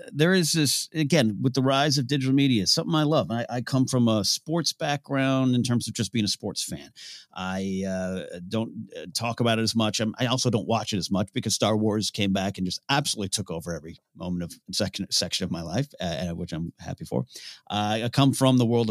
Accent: American